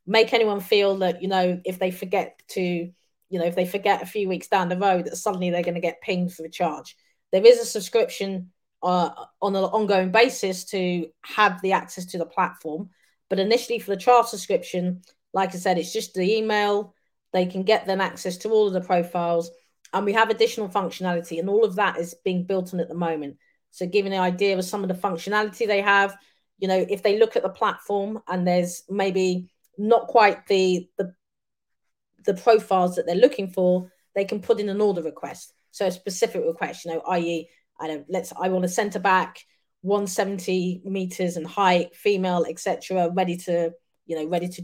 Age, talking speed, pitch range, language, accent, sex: 30-49, 205 wpm, 180-205 Hz, English, British, female